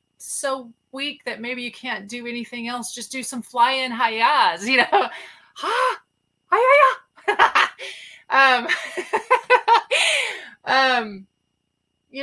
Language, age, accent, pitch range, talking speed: English, 30-49, American, 195-245 Hz, 95 wpm